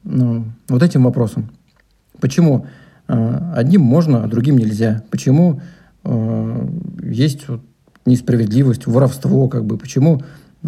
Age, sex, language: 50-69, male, Russian